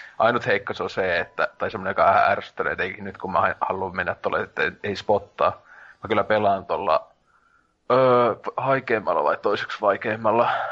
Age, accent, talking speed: 30-49, native, 145 wpm